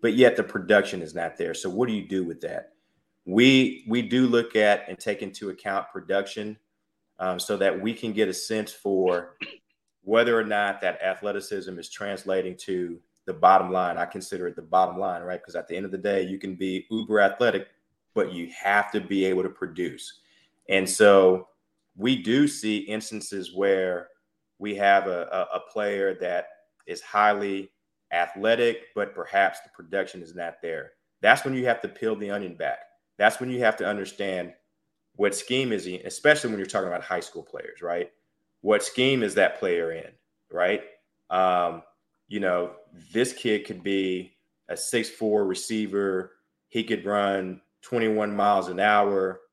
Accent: American